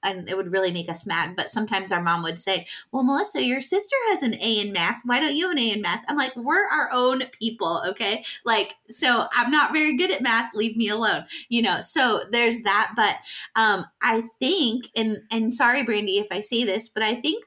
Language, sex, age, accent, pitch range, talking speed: English, female, 20-39, American, 195-255 Hz, 235 wpm